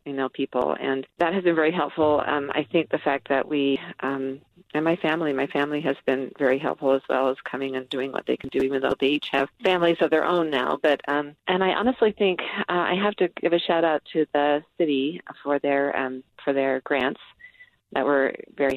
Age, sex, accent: 40-59, female, American